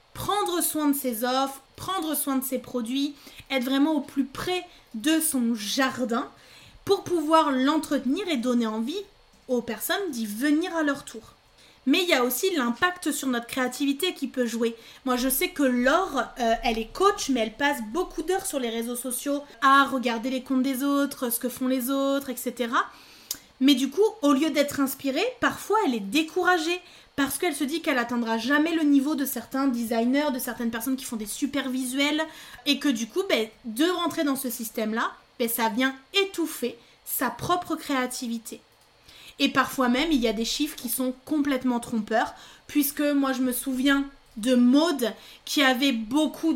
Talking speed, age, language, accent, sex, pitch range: 185 wpm, 20-39, French, French, female, 245-300 Hz